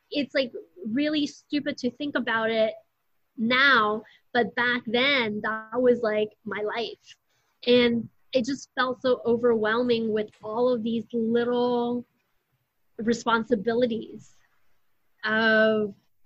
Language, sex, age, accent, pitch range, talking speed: English, female, 20-39, American, 220-260 Hz, 110 wpm